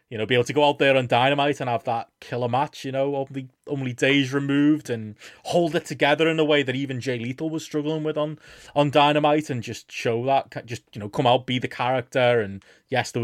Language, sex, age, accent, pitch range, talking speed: English, male, 20-39, British, 115-140 Hz, 240 wpm